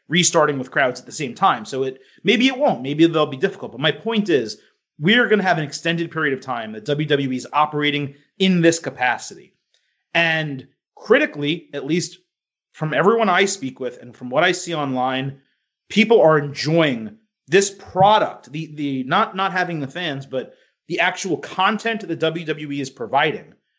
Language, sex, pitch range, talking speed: English, male, 145-195 Hz, 180 wpm